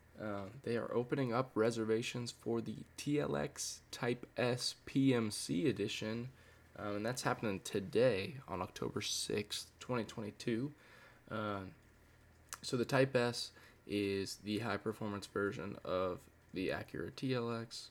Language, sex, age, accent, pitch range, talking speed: English, male, 10-29, American, 105-130 Hz, 115 wpm